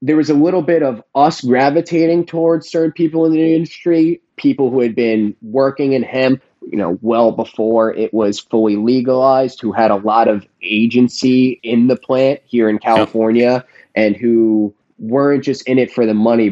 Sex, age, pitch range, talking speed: male, 20-39, 105-135 Hz, 180 wpm